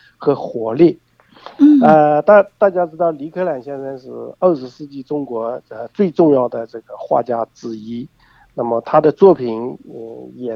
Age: 50-69